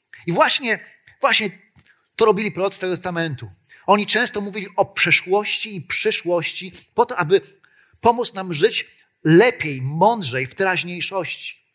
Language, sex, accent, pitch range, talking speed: Polish, male, native, 145-190 Hz, 130 wpm